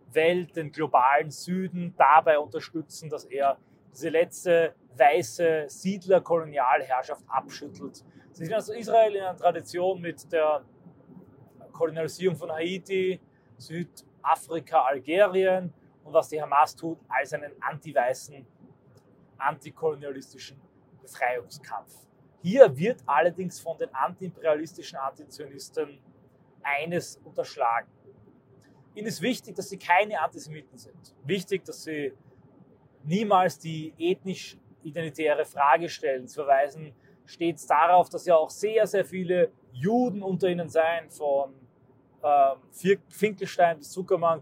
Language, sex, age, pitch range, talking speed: German, male, 30-49, 145-185 Hz, 110 wpm